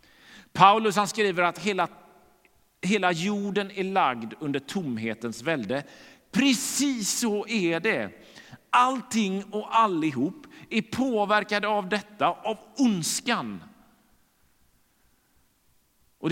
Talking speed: 95 wpm